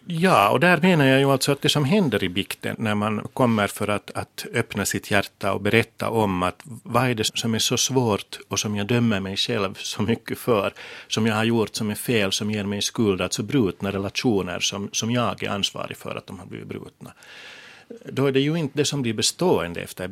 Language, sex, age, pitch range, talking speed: Finnish, male, 60-79, 100-120 Hz, 235 wpm